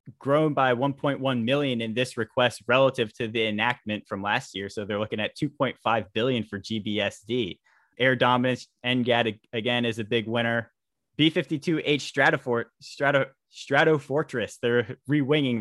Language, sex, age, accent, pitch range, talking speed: English, male, 20-39, American, 115-140 Hz, 130 wpm